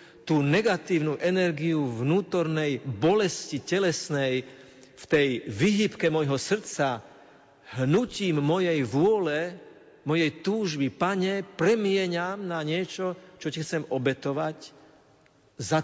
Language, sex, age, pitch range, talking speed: Slovak, male, 50-69, 135-175 Hz, 95 wpm